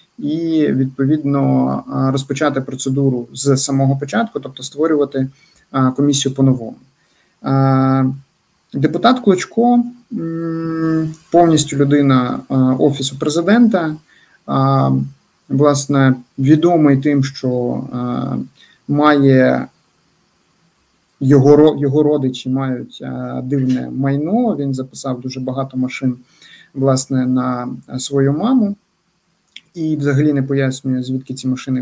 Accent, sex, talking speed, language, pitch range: native, male, 85 wpm, Ukrainian, 130-155 Hz